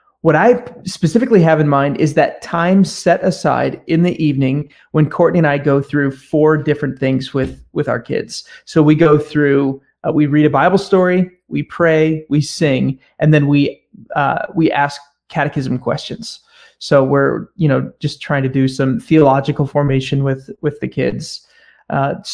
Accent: American